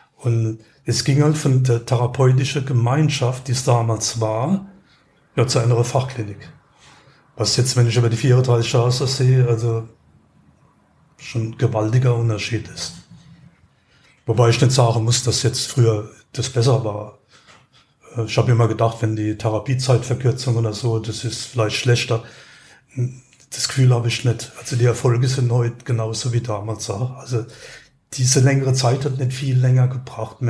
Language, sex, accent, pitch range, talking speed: German, male, German, 115-130 Hz, 155 wpm